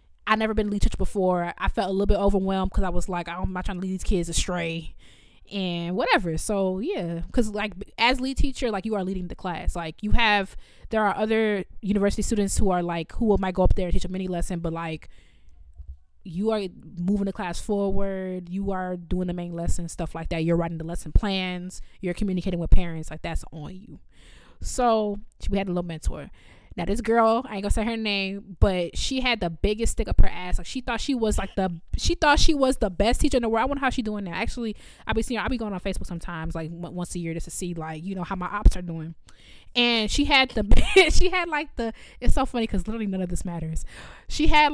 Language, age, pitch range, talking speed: English, 20-39, 175-220 Hz, 250 wpm